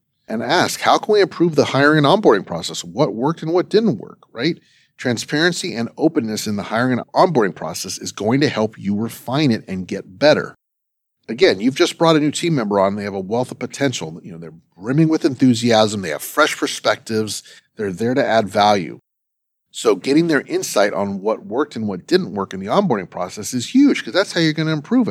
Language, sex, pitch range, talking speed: English, male, 110-155 Hz, 215 wpm